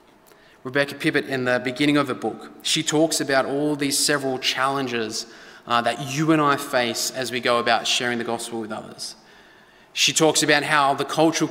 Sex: male